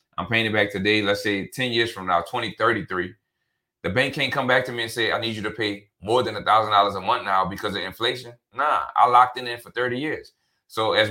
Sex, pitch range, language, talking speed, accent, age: male, 100-120 Hz, English, 255 wpm, American, 30-49